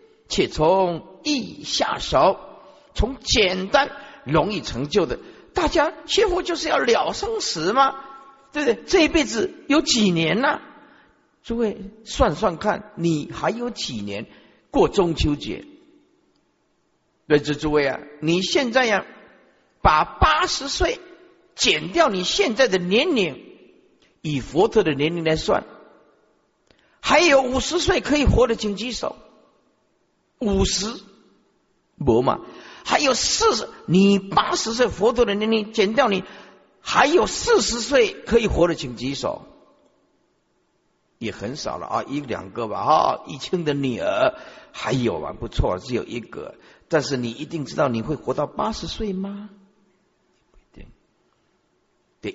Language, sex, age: Chinese, male, 50-69